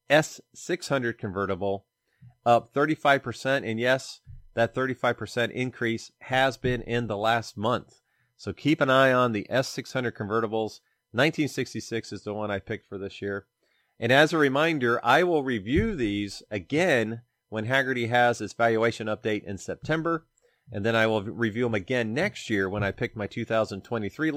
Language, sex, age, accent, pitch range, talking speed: English, male, 30-49, American, 110-130 Hz, 155 wpm